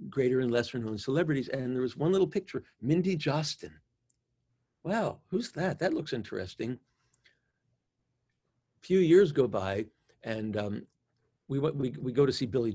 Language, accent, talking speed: English, American, 155 wpm